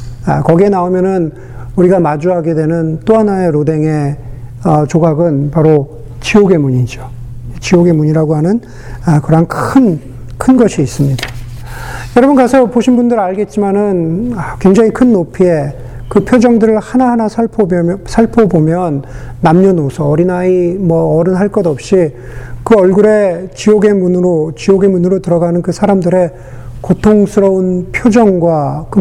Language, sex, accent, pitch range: Korean, male, native, 125-190 Hz